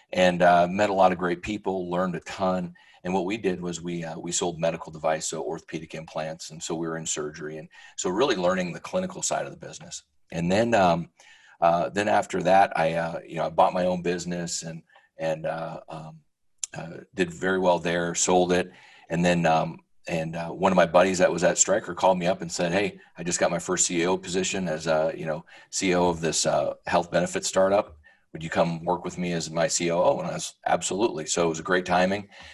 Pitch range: 85-95 Hz